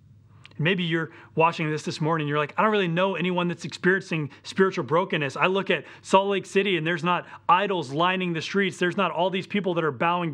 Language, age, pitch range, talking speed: English, 30-49, 115-165 Hz, 220 wpm